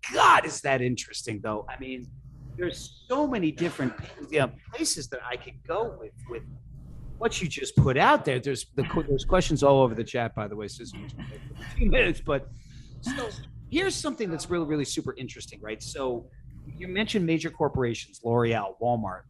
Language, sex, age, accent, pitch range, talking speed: English, male, 40-59, American, 120-150 Hz, 185 wpm